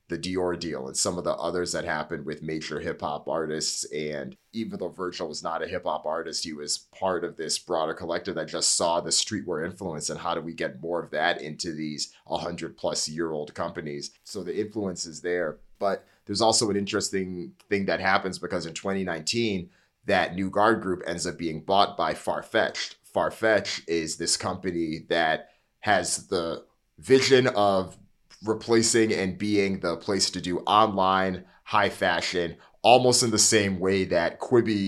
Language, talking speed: English, 170 wpm